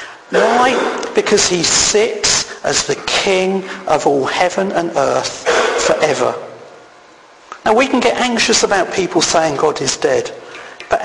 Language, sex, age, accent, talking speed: English, male, 50-69, British, 135 wpm